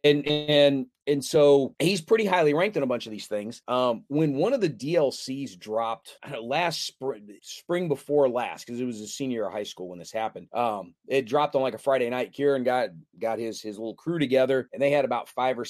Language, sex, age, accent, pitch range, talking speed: English, male, 30-49, American, 115-145 Hz, 230 wpm